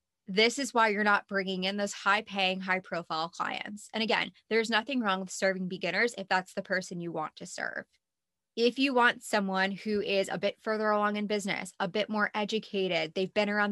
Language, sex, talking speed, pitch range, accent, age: English, female, 200 wpm, 185-215 Hz, American, 20-39